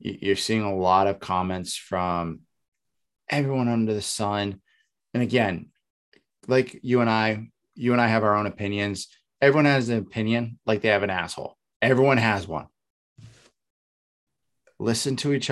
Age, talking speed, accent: 20-39, 150 wpm, American